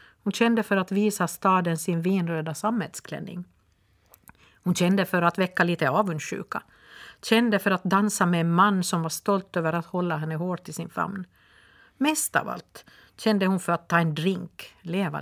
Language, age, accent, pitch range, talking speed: Swedish, 50-69, native, 165-205 Hz, 180 wpm